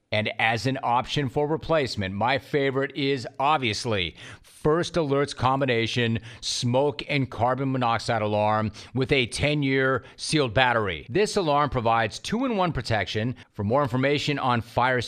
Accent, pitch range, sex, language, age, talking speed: American, 115-140 Hz, male, English, 40-59, 130 wpm